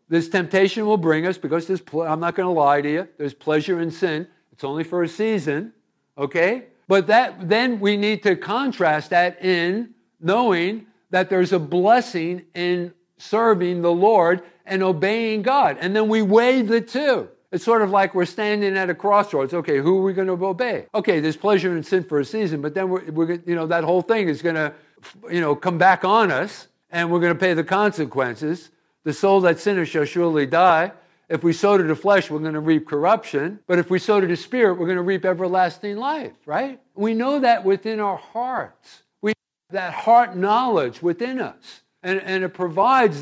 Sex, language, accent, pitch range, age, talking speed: male, English, American, 170-215 Hz, 50-69, 205 wpm